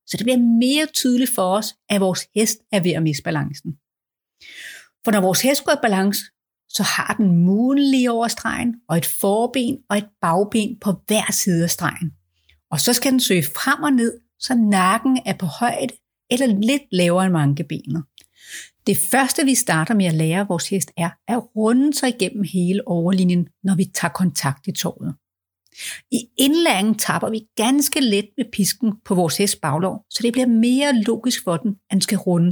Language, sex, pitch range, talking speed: Danish, female, 180-245 Hz, 190 wpm